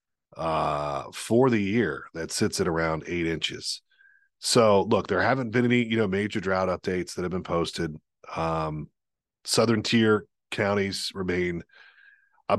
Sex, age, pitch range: male, 40-59, 90-125 Hz